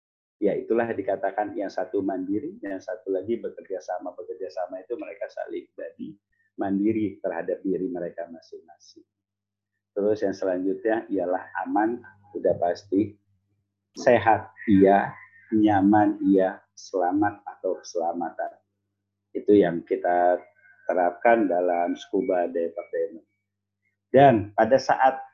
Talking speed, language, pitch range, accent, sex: 110 wpm, Indonesian, 100-130 Hz, native, male